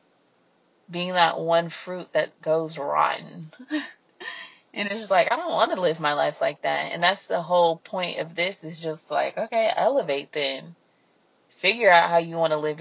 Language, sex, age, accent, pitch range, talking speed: English, female, 20-39, American, 165-235 Hz, 185 wpm